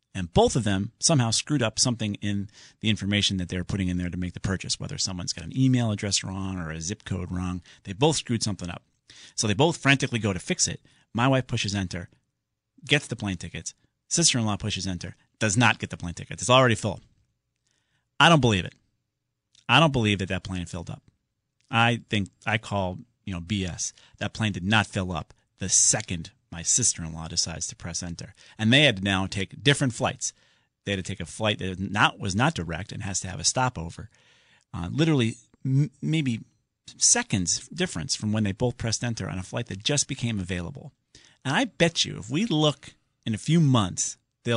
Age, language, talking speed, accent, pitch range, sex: 40-59, English, 205 wpm, American, 95-130 Hz, male